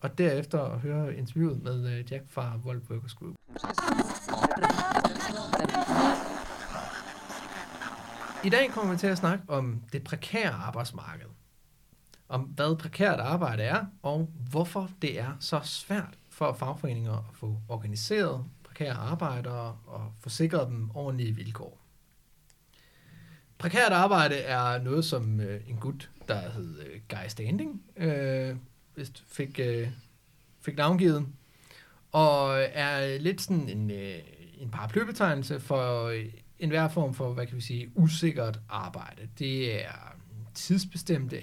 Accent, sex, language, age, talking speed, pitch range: native, male, Danish, 30-49, 115 wpm, 120-160 Hz